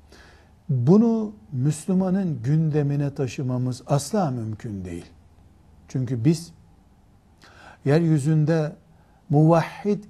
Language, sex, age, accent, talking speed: Turkish, male, 60-79, native, 65 wpm